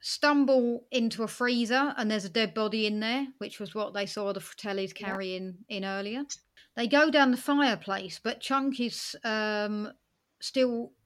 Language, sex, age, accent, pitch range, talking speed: English, female, 30-49, British, 205-255 Hz, 170 wpm